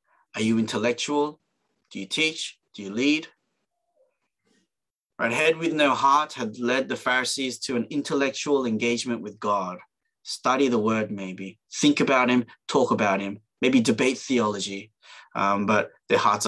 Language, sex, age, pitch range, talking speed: English, male, 20-39, 115-140 Hz, 150 wpm